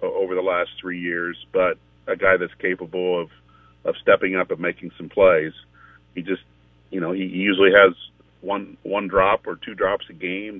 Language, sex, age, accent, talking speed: English, male, 40-59, American, 185 wpm